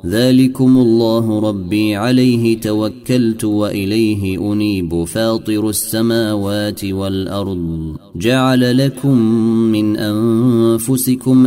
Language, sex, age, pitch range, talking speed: Arabic, male, 30-49, 95-115 Hz, 75 wpm